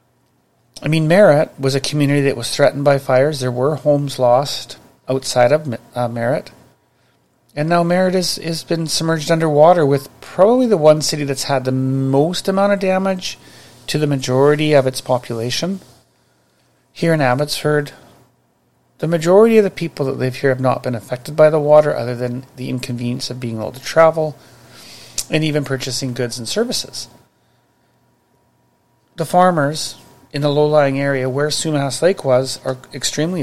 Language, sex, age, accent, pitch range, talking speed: English, male, 40-59, American, 130-160 Hz, 160 wpm